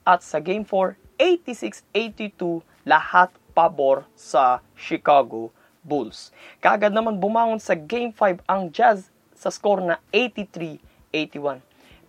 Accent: native